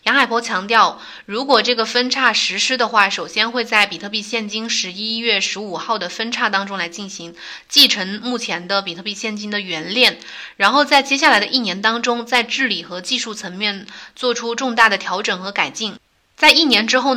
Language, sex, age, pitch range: Chinese, female, 20-39, 195-245 Hz